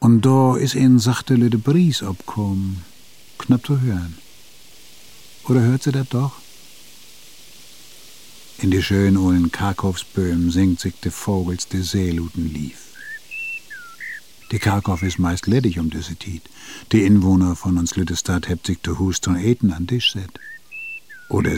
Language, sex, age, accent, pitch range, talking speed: German, male, 60-79, German, 90-115 Hz, 140 wpm